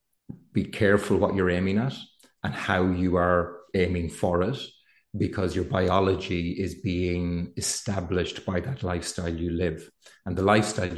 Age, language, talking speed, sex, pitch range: 30-49, English, 150 wpm, male, 85-100 Hz